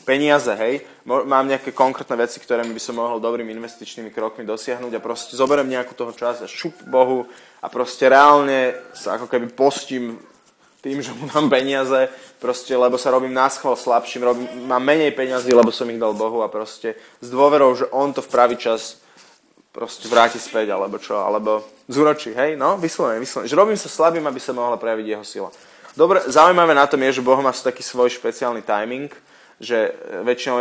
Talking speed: 185 wpm